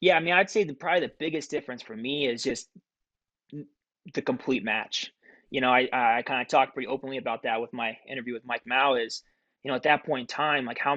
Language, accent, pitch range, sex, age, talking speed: English, American, 125-140 Hz, male, 20-39, 240 wpm